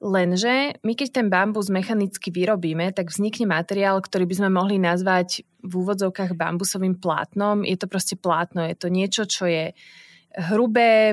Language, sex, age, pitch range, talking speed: Slovak, female, 20-39, 180-210 Hz, 155 wpm